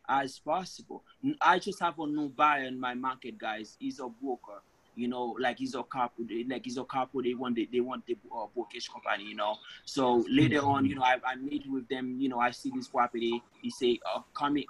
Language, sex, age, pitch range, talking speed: English, male, 20-39, 130-170 Hz, 225 wpm